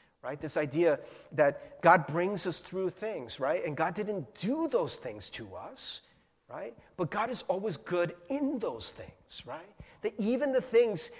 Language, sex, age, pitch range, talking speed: English, male, 40-59, 170-225 Hz, 170 wpm